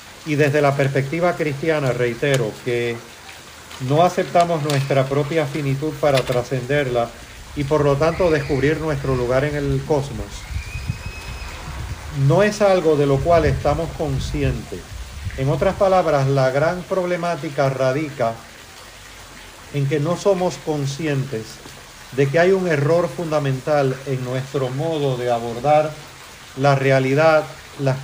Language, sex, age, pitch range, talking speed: Spanish, male, 40-59, 130-160 Hz, 125 wpm